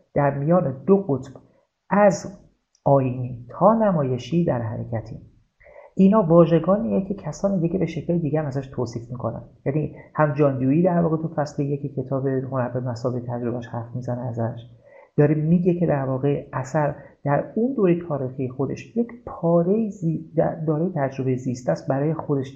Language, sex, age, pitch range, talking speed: Persian, male, 40-59, 130-170 Hz, 150 wpm